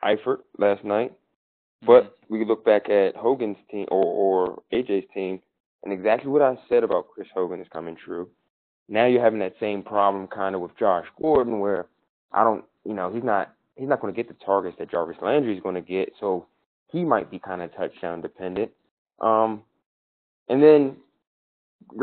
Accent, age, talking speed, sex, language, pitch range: American, 20-39, 180 wpm, male, English, 95-110 Hz